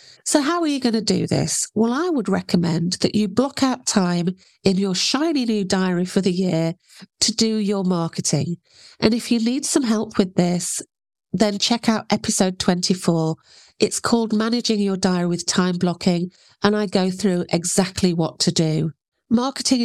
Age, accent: 40-59, British